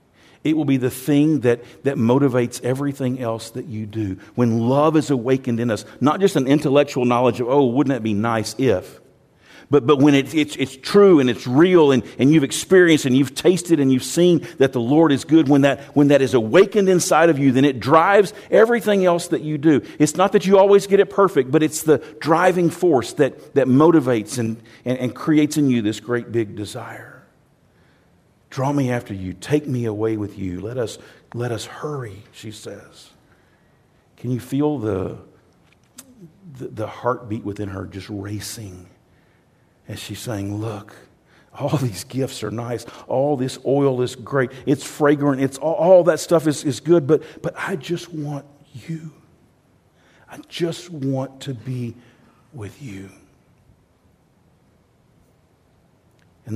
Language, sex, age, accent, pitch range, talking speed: English, male, 50-69, American, 120-155 Hz, 175 wpm